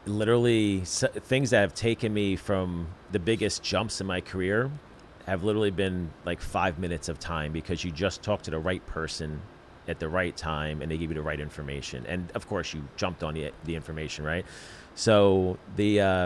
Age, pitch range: 30-49, 80-95 Hz